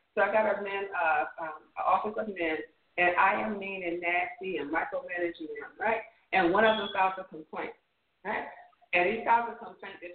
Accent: American